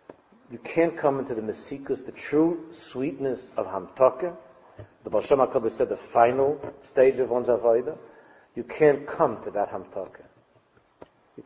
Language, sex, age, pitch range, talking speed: English, male, 50-69, 110-170 Hz, 140 wpm